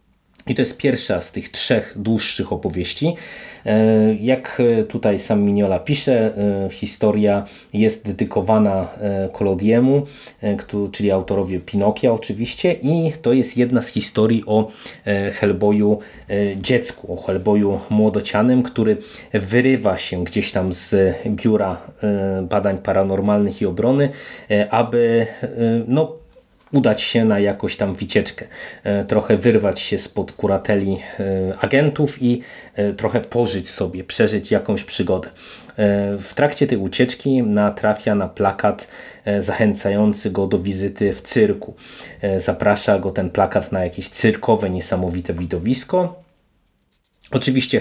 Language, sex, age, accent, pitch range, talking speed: Polish, male, 20-39, native, 100-120 Hz, 110 wpm